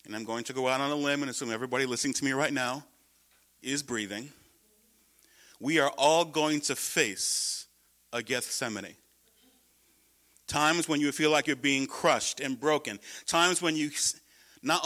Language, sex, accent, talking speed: English, male, American, 165 wpm